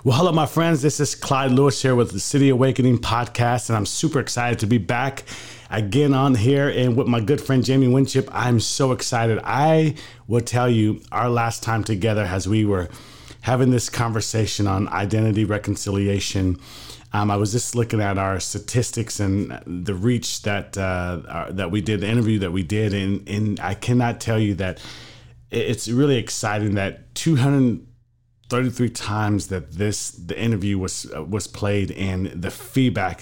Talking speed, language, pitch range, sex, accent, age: 175 wpm, English, 100-125 Hz, male, American, 30-49